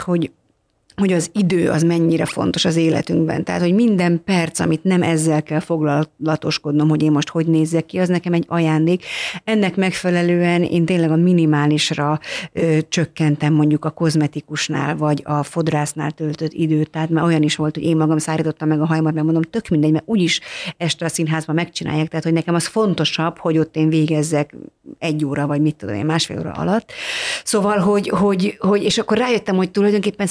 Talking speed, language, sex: 180 wpm, Hungarian, female